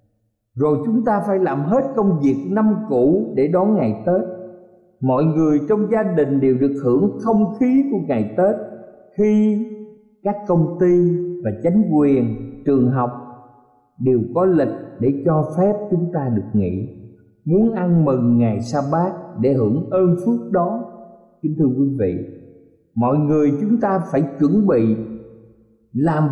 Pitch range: 115-185 Hz